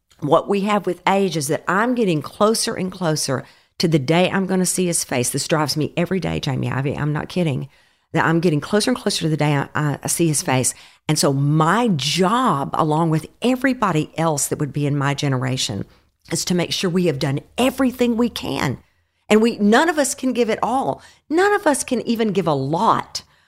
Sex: female